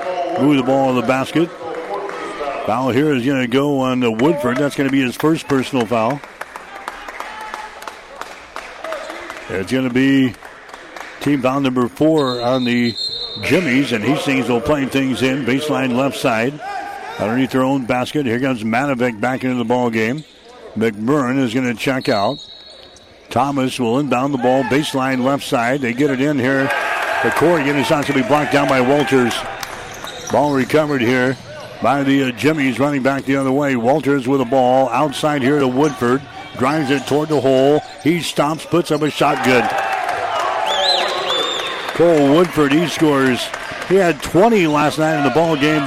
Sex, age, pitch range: male, 60-79, 130-150 Hz